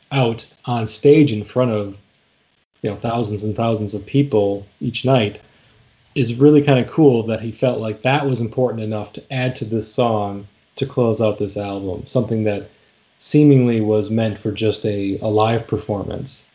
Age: 30-49